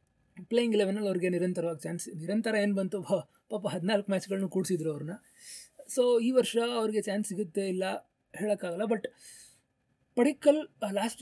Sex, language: male, Kannada